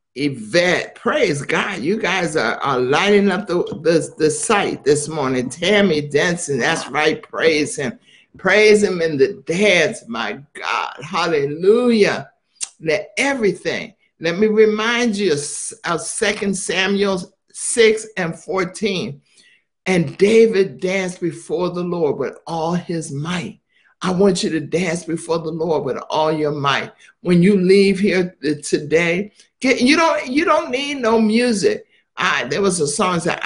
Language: English